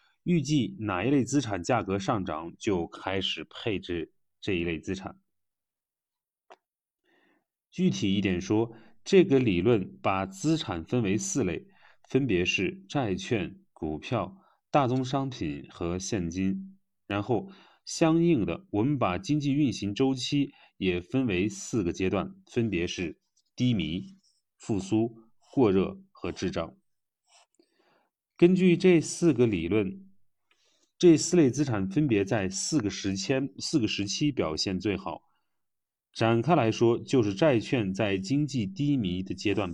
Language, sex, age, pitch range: Chinese, male, 30-49, 95-150 Hz